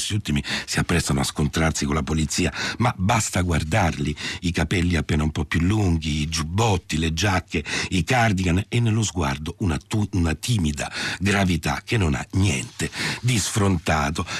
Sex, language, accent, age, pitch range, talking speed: male, Italian, native, 60-79, 80-110 Hz, 160 wpm